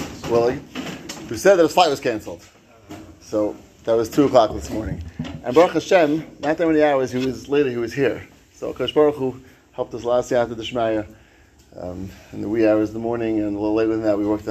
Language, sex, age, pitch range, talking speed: English, male, 30-49, 95-130 Hz, 230 wpm